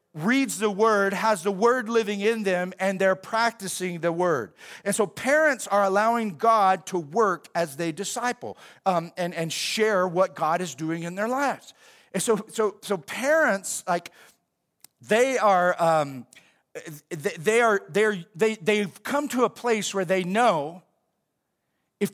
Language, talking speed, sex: English, 160 wpm, male